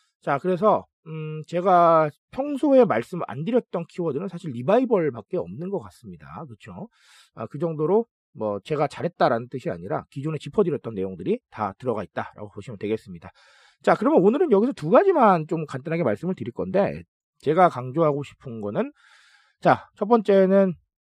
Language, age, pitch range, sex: Korean, 40-59, 135-220 Hz, male